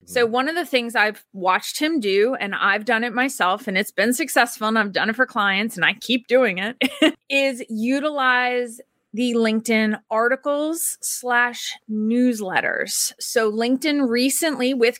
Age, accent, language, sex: 20-39, American, English, female